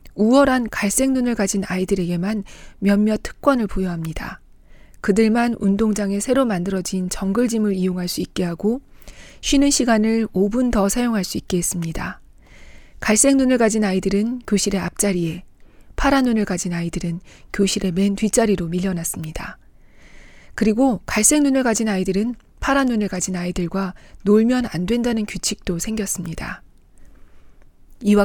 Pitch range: 185-240 Hz